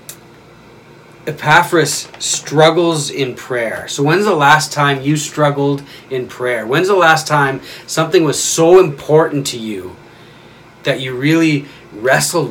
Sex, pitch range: male, 130-160 Hz